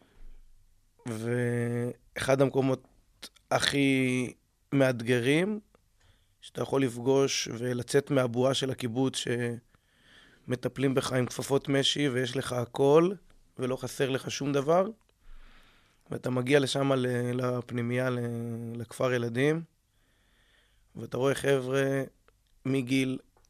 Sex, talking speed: male, 90 wpm